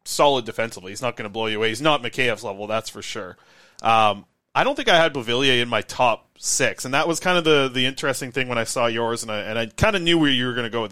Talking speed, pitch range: 295 wpm, 110-140 Hz